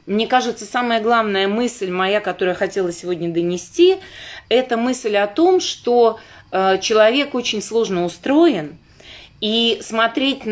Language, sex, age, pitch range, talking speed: Russian, female, 30-49, 180-230 Hz, 125 wpm